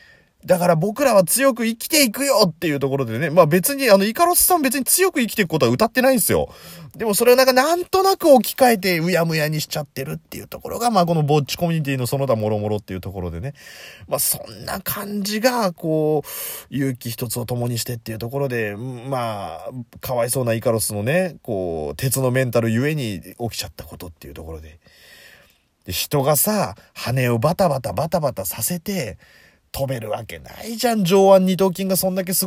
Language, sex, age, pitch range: Japanese, male, 30-49, 115-195 Hz